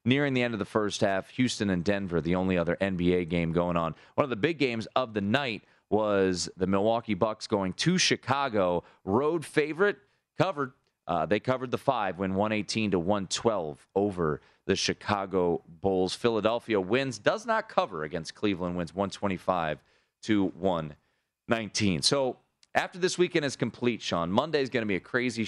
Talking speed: 170 wpm